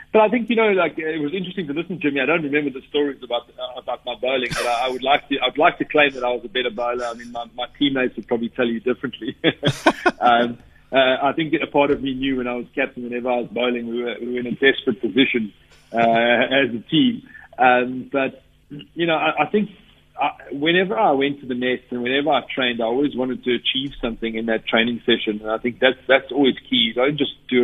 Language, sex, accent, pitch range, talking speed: English, male, South African, 115-135 Hz, 255 wpm